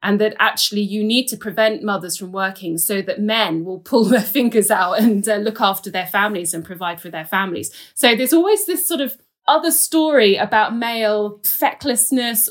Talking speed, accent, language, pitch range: 190 wpm, British, English, 185-225 Hz